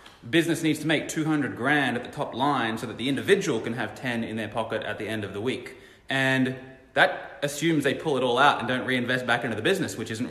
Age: 20-39